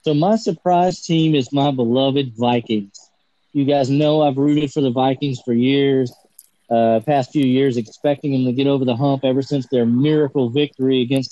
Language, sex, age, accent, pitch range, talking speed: English, male, 40-59, American, 130-155 Hz, 185 wpm